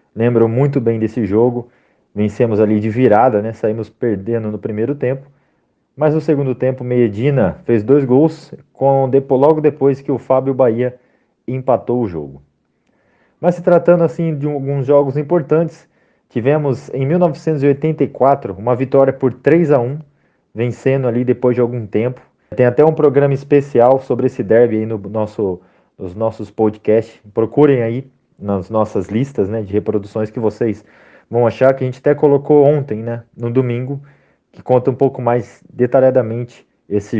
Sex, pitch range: male, 115-140 Hz